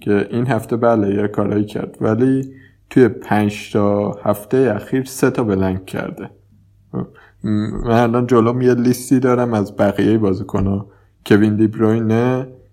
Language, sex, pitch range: Persian, male, 100-125 Hz